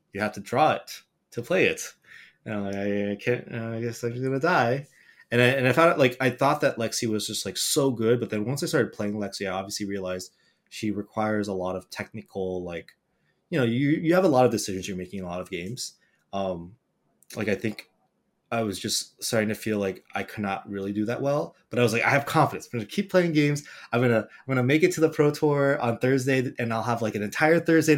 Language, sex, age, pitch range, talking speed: English, male, 20-39, 95-125 Hz, 250 wpm